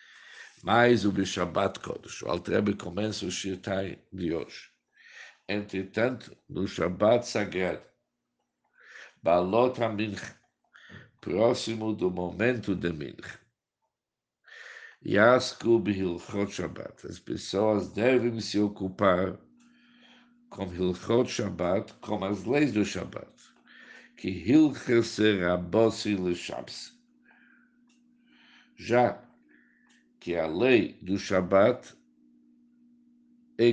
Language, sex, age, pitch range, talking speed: Portuguese, male, 60-79, 95-130 Hz, 90 wpm